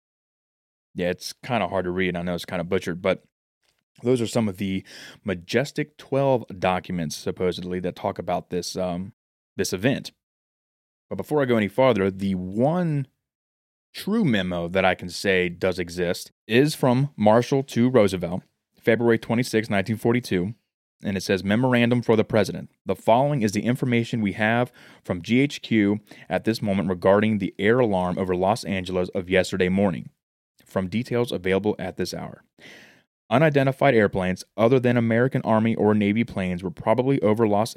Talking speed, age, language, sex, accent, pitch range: 165 wpm, 20-39, English, male, American, 95-120 Hz